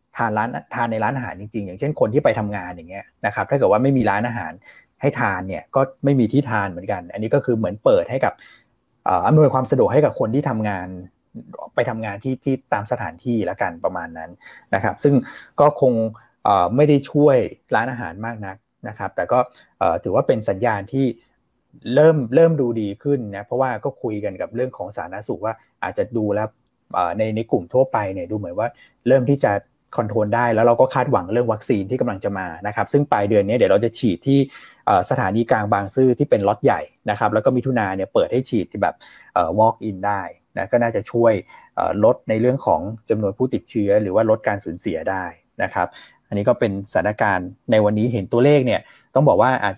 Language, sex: Thai, male